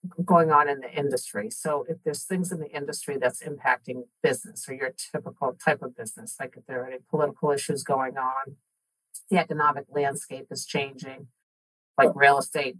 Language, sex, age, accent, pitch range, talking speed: English, female, 50-69, American, 140-170 Hz, 180 wpm